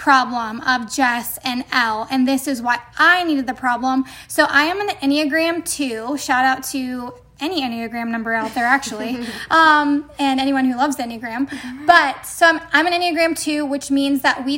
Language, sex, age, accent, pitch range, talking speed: English, female, 10-29, American, 255-300 Hz, 185 wpm